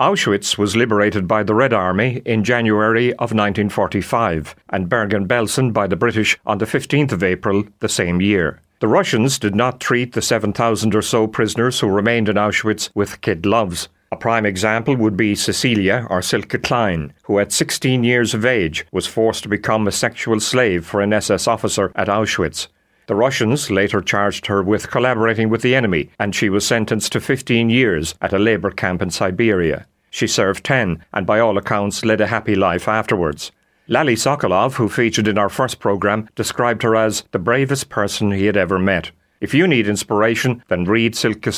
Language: English